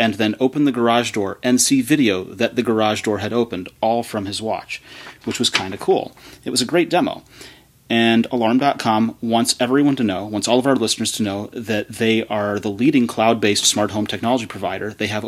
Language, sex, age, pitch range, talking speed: English, male, 30-49, 105-120 Hz, 210 wpm